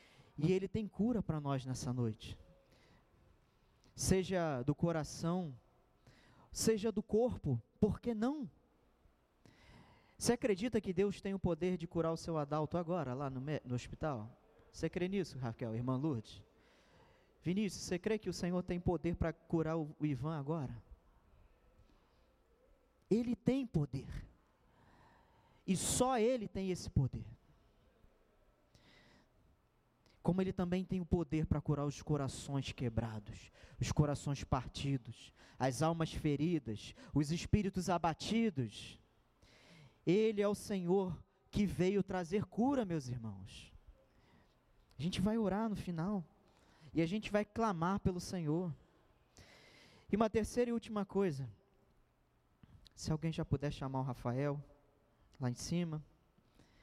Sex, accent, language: male, Brazilian, Portuguese